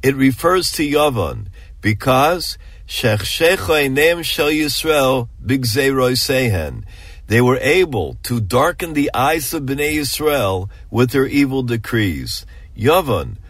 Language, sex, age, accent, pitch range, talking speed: English, male, 50-69, American, 105-145 Hz, 90 wpm